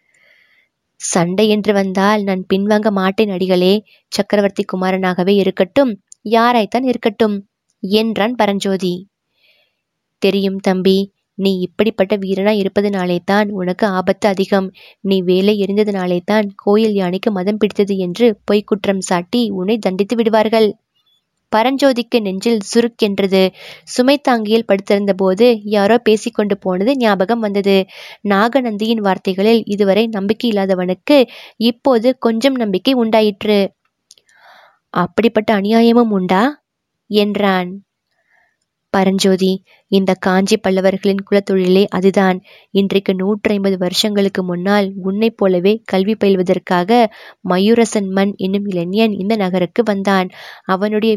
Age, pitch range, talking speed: 20-39, 190-220 Hz, 95 wpm